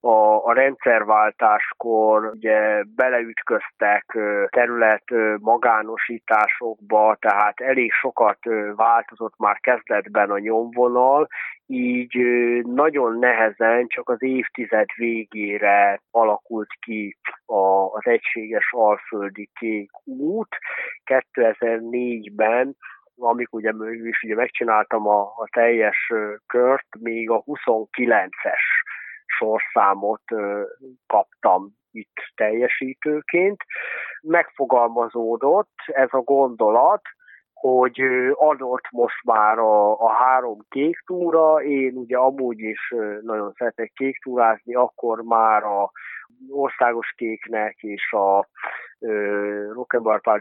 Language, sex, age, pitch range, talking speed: Hungarian, male, 30-49, 110-130 Hz, 85 wpm